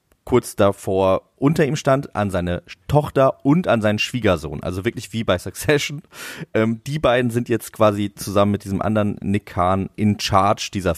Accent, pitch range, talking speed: German, 100-130 Hz, 175 wpm